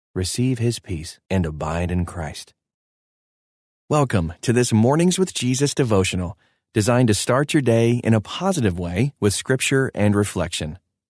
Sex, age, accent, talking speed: male, 30-49, American, 145 wpm